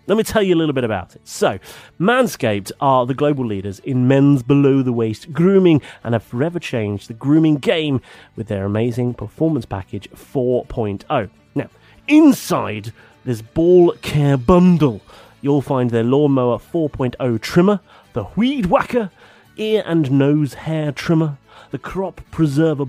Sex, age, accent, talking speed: male, 30-49, British, 145 wpm